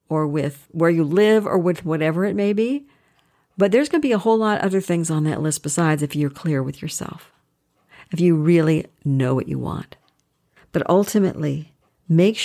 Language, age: English, 50-69